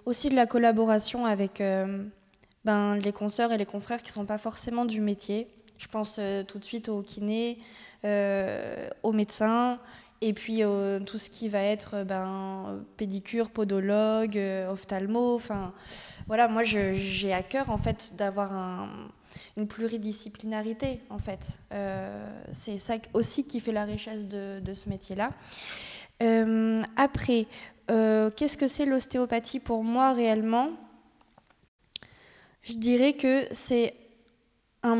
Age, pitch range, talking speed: 20-39, 205-235 Hz, 140 wpm